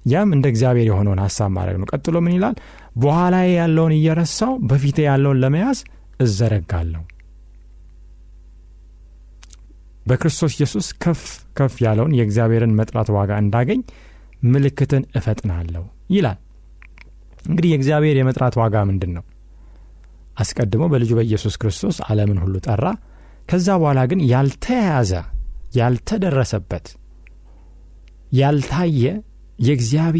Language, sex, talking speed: Amharic, male, 85 wpm